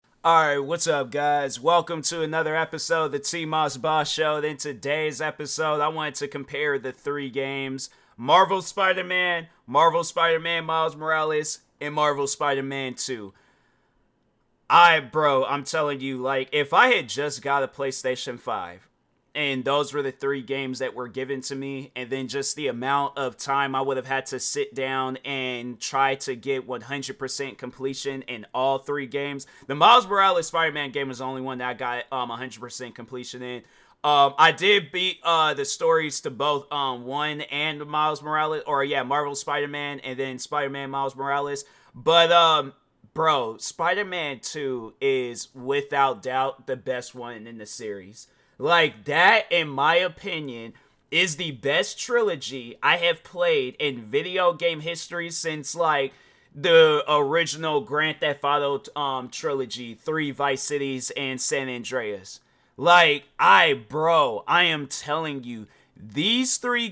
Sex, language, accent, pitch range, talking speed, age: male, English, American, 130-160 Hz, 160 wpm, 30-49